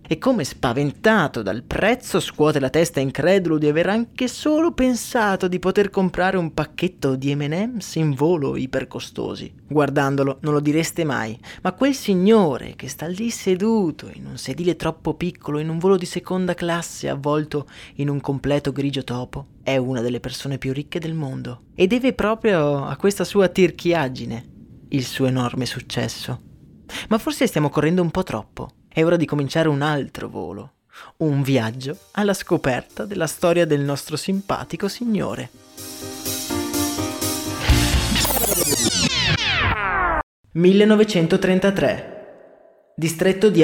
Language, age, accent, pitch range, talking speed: Italian, 20-39, native, 140-195 Hz, 135 wpm